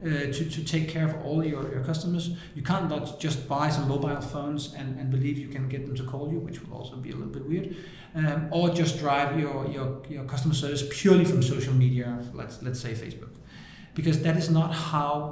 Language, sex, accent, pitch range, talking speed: English, male, Danish, 135-170 Hz, 225 wpm